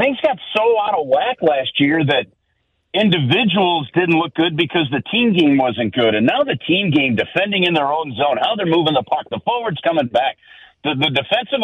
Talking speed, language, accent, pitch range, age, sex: 210 wpm, English, American, 135-185 Hz, 50-69, male